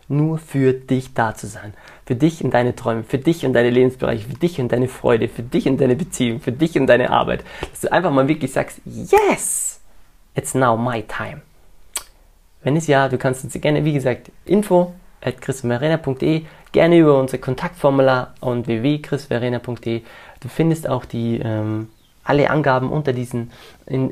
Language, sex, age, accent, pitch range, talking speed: German, male, 20-39, German, 120-145 Hz, 170 wpm